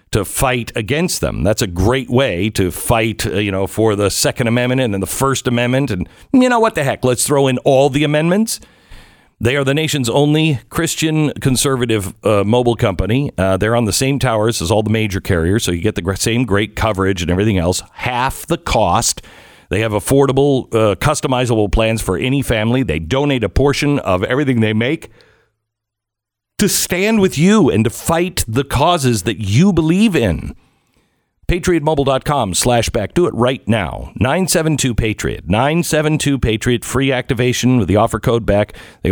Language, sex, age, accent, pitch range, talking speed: English, male, 50-69, American, 105-135 Hz, 175 wpm